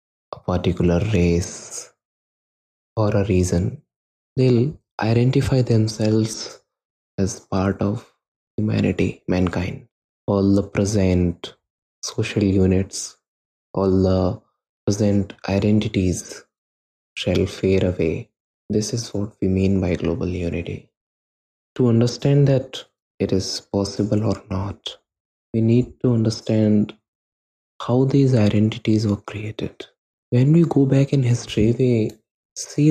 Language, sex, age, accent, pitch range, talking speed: Hindi, male, 20-39, native, 95-120 Hz, 105 wpm